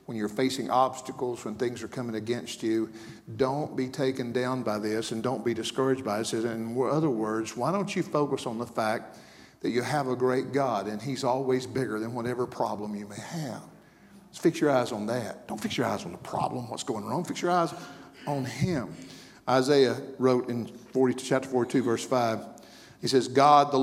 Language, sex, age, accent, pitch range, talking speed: English, male, 50-69, American, 125-190 Hz, 210 wpm